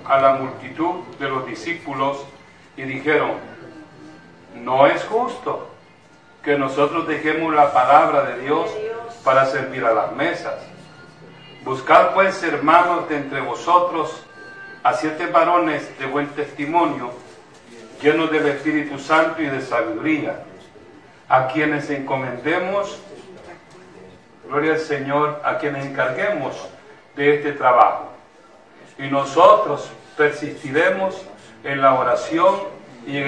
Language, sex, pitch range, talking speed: Spanish, male, 140-180 Hz, 110 wpm